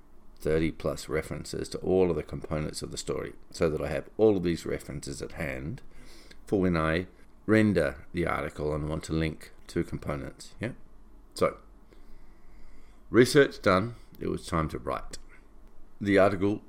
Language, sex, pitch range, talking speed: English, male, 80-100 Hz, 160 wpm